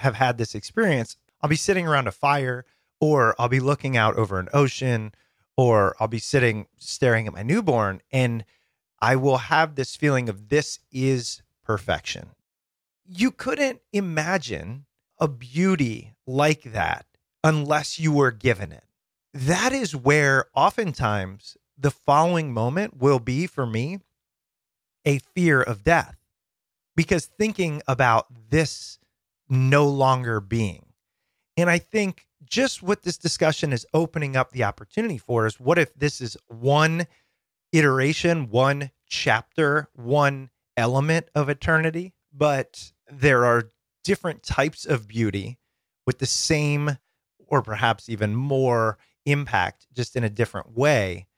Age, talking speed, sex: 30-49, 135 wpm, male